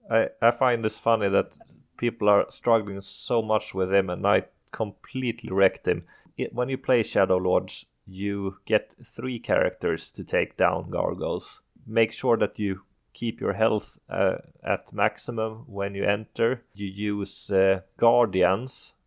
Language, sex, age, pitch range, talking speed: English, male, 30-49, 95-110 Hz, 150 wpm